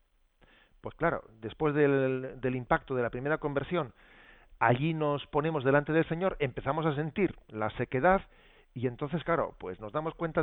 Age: 40-59